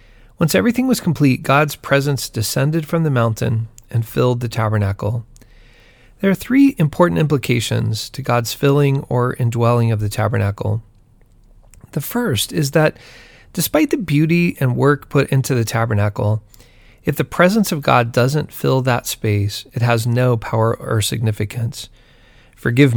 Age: 40-59